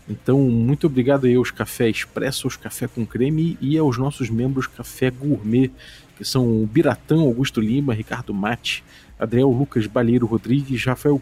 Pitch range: 120-150 Hz